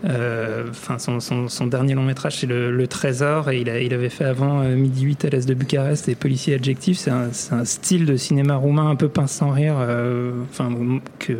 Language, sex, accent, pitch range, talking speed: French, male, French, 130-165 Hz, 215 wpm